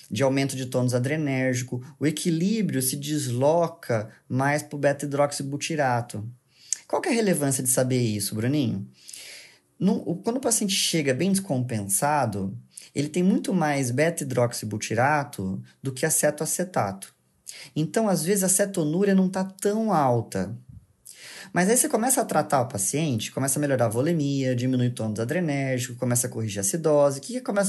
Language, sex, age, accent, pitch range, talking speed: Portuguese, male, 20-39, Brazilian, 125-170 Hz, 155 wpm